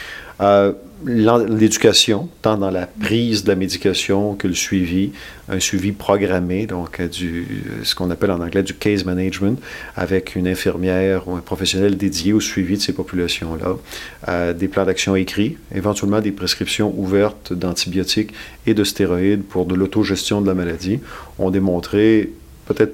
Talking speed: 155 wpm